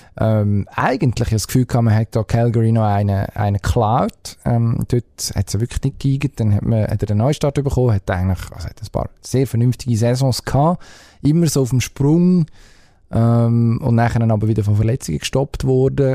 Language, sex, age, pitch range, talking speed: German, male, 20-39, 105-130 Hz, 195 wpm